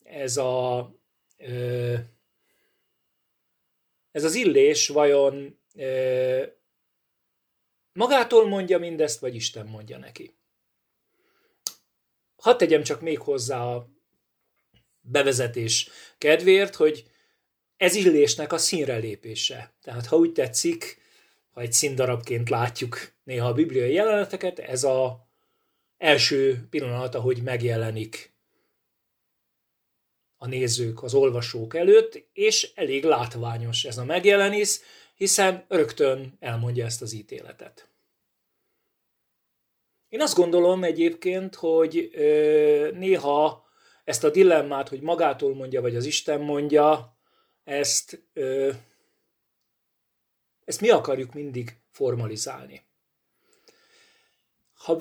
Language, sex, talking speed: Hungarian, male, 95 wpm